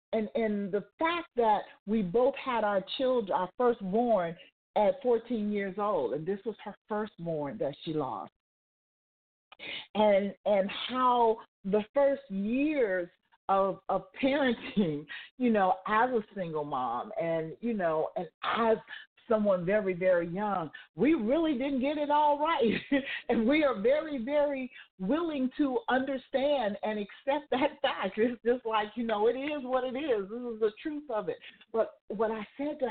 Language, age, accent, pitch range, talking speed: English, 50-69, American, 200-265 Hz, 160 wpm